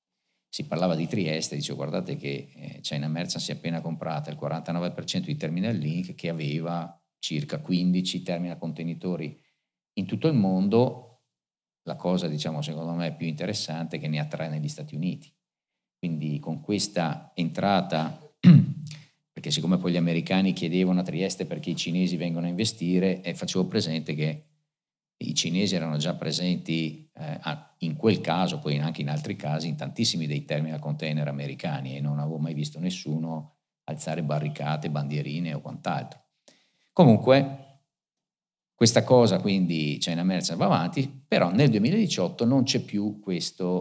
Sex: male